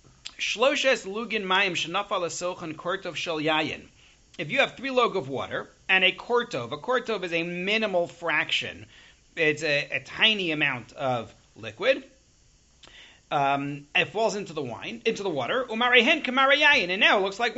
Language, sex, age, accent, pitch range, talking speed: English, male, 40-59, American, 155-215 Hz, 155 wpm